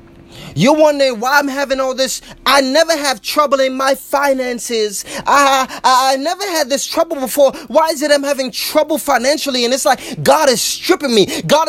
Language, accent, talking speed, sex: English, American, 185 wpm, male